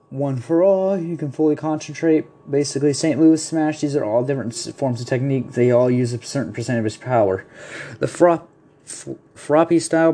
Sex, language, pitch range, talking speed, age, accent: male, English, 130-160 Hz, 190 wpm, 20-39, American